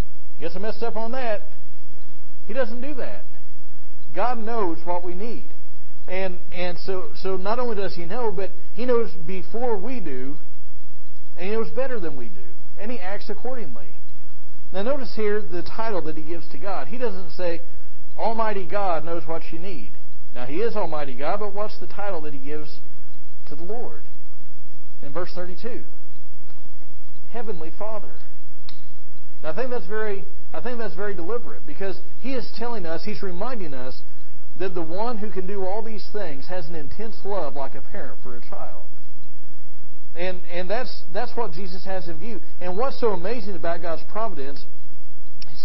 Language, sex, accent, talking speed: English, male, American, 175 wpm